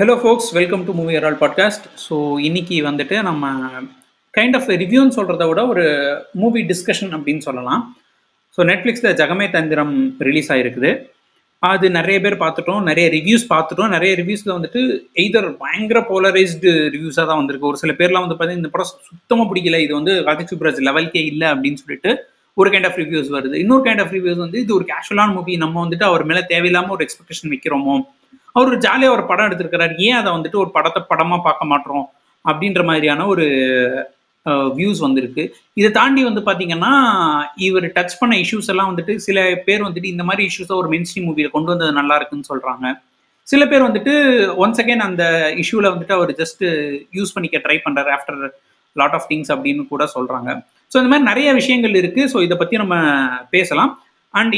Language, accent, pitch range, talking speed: Tamil, native, 150-205 Hz, 175 wpm